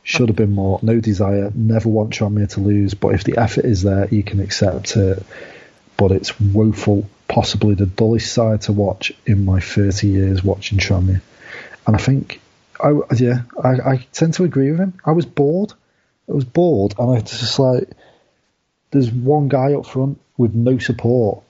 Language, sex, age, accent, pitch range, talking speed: English, male, 30-49, British, 100-125 Hz, 185 wpm